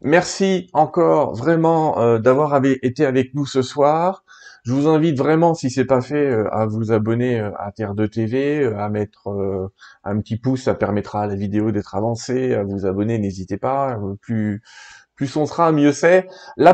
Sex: male